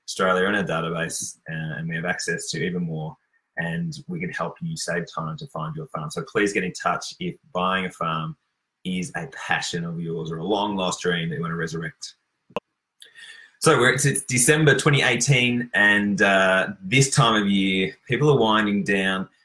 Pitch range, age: 90-140 Hz, 20-39